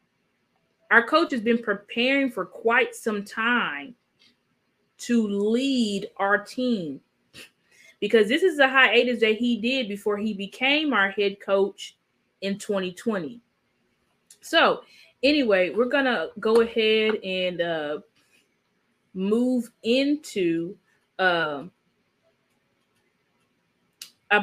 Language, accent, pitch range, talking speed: English, American, 175-235 Hz, 105 wpm